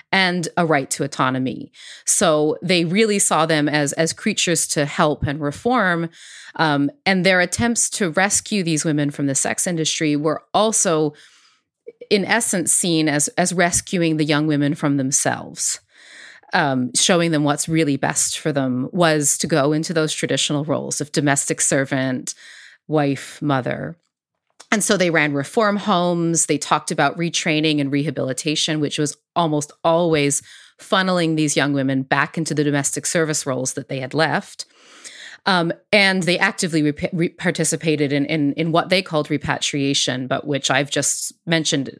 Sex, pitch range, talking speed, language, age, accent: female, 145-175 Hz, 155 wpm, English, 30-49, American